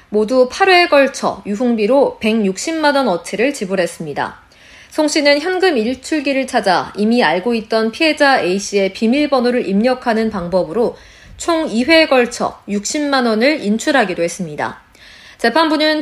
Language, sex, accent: Korean, female, native